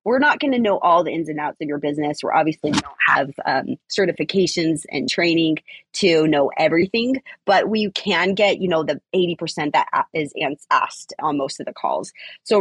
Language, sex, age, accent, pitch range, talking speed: English, female, 20-39, American, 150-190 Hz, 190 wpm